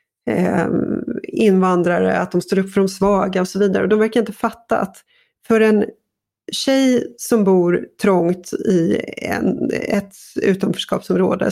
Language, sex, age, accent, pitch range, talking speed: Swedish, female, 30-49, native, 190-230 Hz, 135 wpm